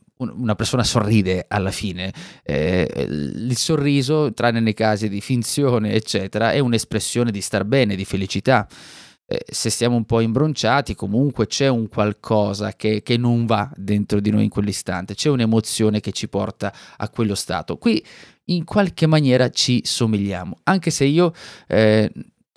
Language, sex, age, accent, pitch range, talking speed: Italian, male, 20-39, native, 100-120 Hz, 155 wpm